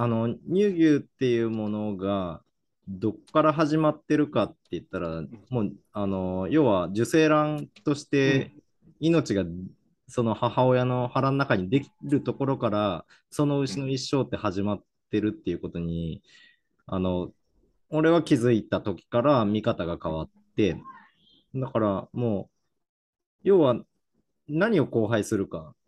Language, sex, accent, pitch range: Japanese, male, native, 100-135 Hz